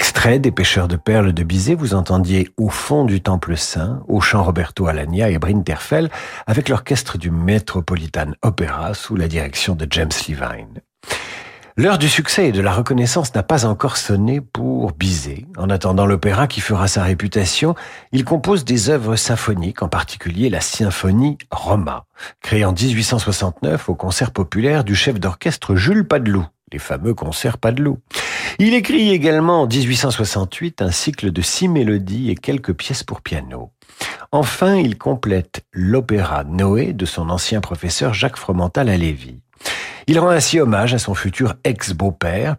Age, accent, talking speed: 50-69, French, 160 wpm